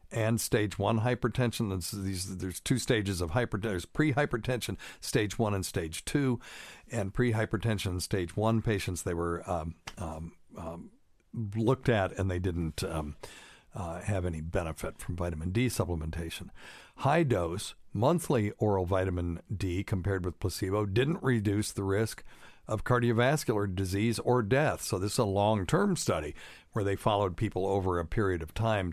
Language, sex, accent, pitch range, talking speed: English, male, American, 95-120 Hz, 150 wpm